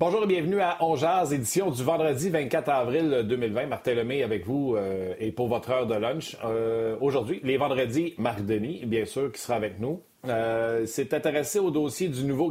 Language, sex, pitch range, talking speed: French, male, 105-145 Hz, 200 wpm